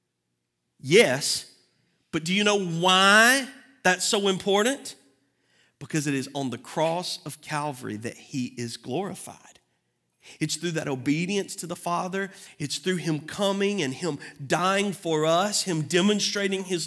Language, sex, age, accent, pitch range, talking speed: English, male, 40-59, American, 155-255 Hz, 140 wpm